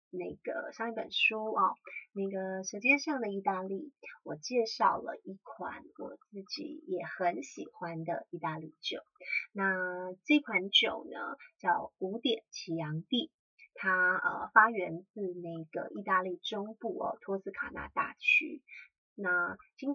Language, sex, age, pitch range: Chinese, female, 30-49, 185-260 Hz